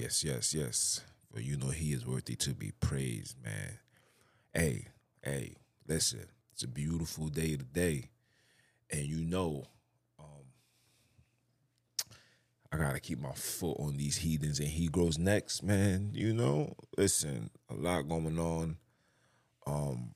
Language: English